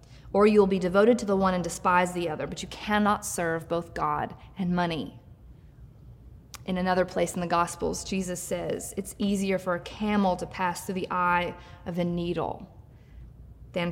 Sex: female